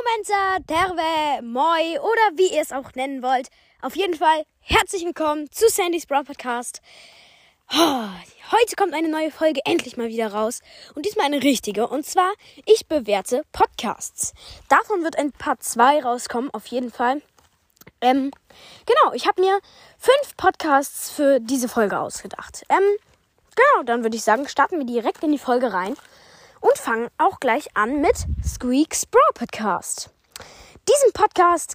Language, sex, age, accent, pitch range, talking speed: German, female, 20-39, German, 250-335 Hz, 155 wpm